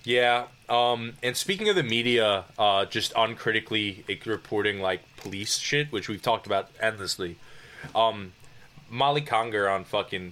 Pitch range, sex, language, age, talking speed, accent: 100-130 Hz, male, English, 20-39, 140 wpm, American